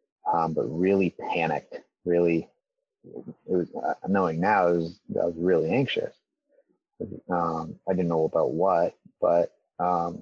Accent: American